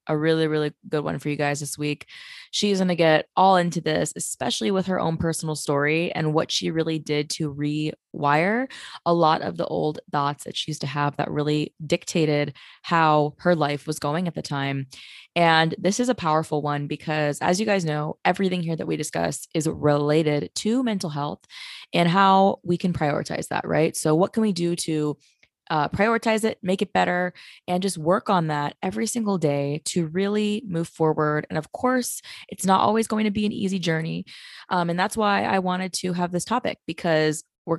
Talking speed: 205 wpm